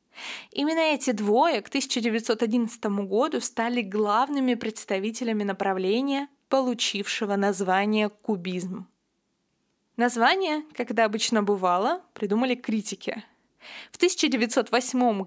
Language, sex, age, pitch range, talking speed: Russian, female, 20-39, 215-270 Hz, 85 wpm